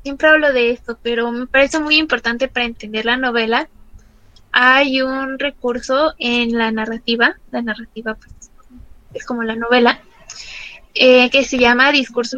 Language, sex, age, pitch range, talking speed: Spanish, female, 20-39, 235-270 Hz, 145 wpm